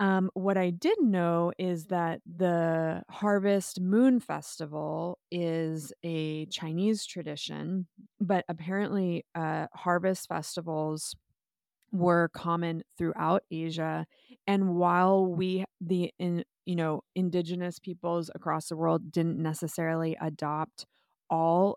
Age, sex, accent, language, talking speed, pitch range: 20-39, female, American, English, 110 wpm, 160-195 Hz